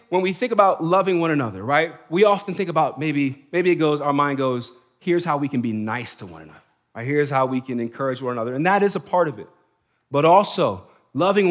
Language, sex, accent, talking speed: English, male, American, 240 wpm